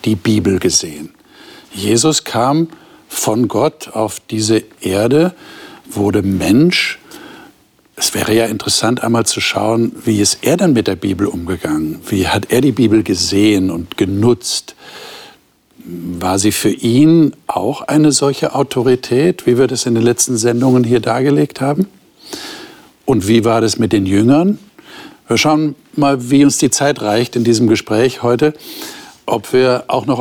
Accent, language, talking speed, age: German, German, 150 wpm, 60-79